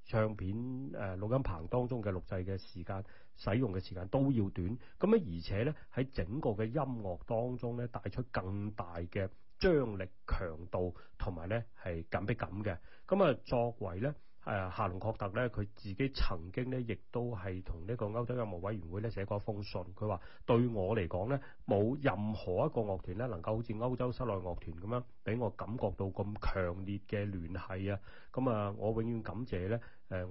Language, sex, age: Chinese, male, 30-49